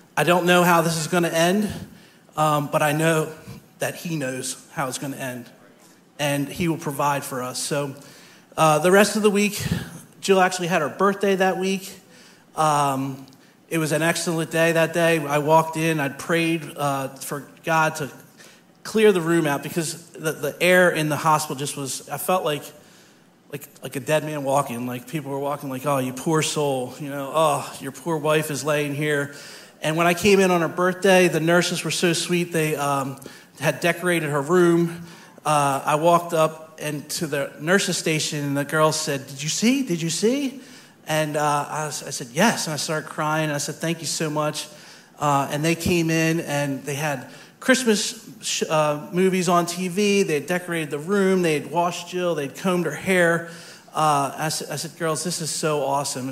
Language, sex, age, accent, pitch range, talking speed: English, male, 40-59, American, 145-175 Hz, 200 wpm